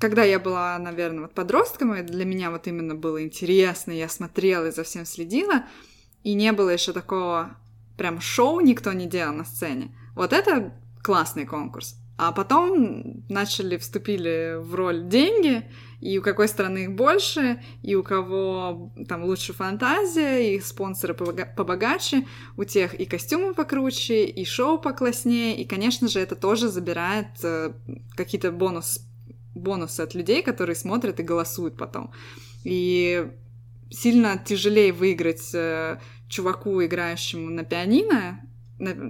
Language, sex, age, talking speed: Russian, female, 20-39, 140 wpm